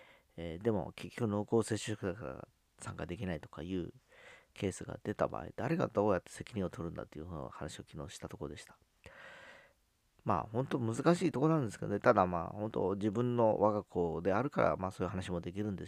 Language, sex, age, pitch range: Japanese, male, 40-59, 85-110 Hz